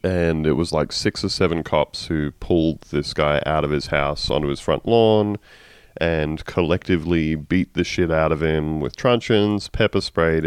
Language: English